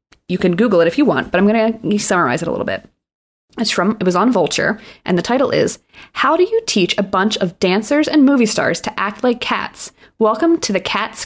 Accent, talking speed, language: American, 240 wpm, English